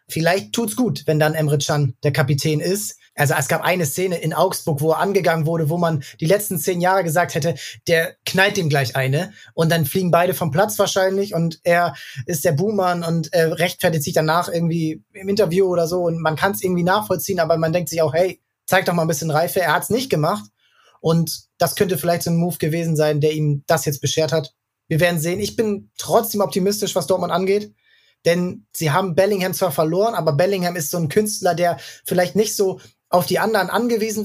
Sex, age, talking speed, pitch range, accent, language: male, 20-39, 215 wpm, 160-190 Hz, German, German